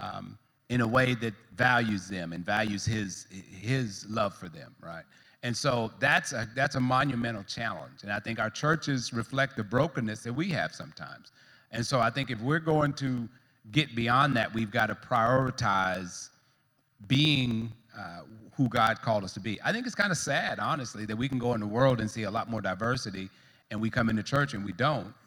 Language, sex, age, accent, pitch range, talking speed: English, male, 40-59, American, 110-140 Hz, 205 wpm